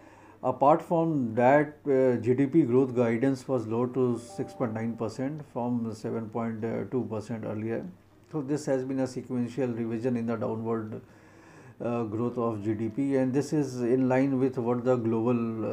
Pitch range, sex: 110-130 Hz, male